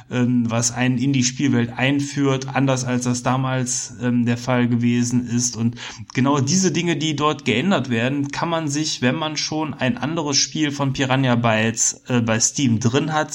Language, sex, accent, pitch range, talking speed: German, male, German, 120-140 Hz, 180 wpm